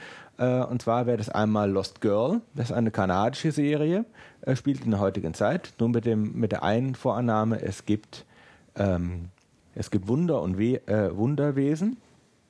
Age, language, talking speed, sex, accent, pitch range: 40-59, German, 165 wpm, male, German, 100-130 Hz